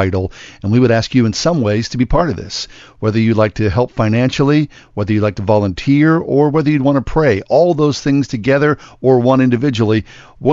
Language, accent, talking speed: English, American, 215 wpm